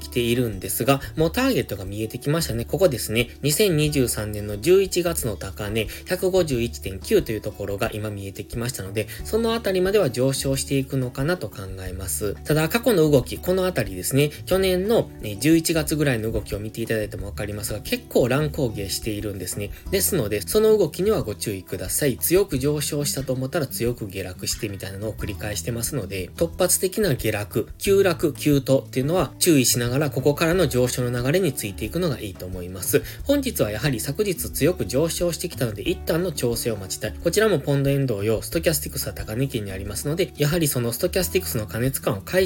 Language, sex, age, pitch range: Japanese, male, 20-39, 105-165 Hz